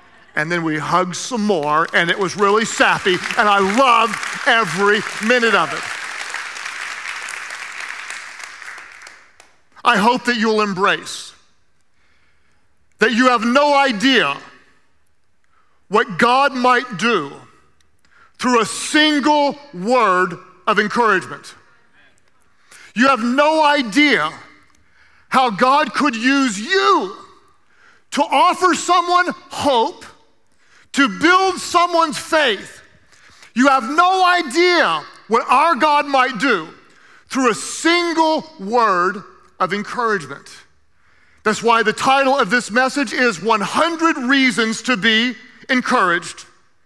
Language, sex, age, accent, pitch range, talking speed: English, male, 50-69, American, 220-310 Hz, 105 wpm